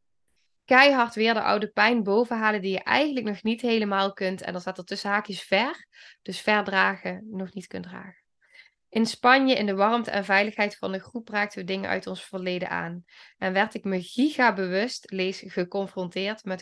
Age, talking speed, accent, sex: 10-29, 190 wpm, Dutch, female